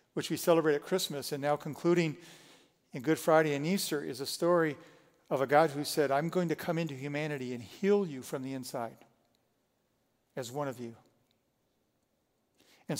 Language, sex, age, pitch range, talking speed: English, male, 50-69, 140-170 Hz, 175 wpm